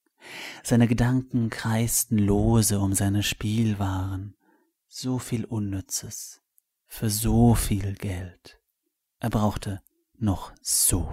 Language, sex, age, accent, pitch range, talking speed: German, male, 30-49, German, 100-130 Hz, 95 wpm